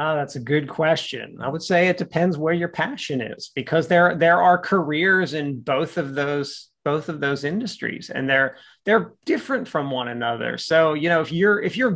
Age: 30-49